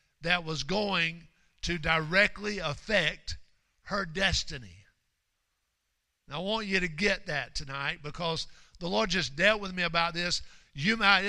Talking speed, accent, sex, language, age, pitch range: 135 wpm, American, male, English, 50-69, 160-205 Hz